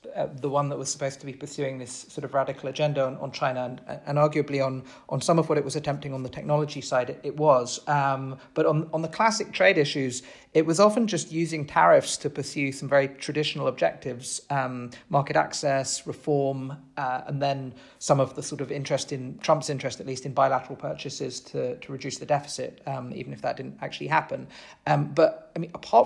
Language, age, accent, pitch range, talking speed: English, 40-59, British, 135-155 Hz, 215 wpm